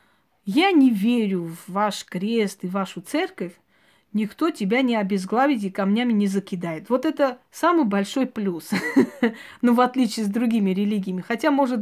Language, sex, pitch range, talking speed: Russian, female, 195-250 Hz, 150 wpm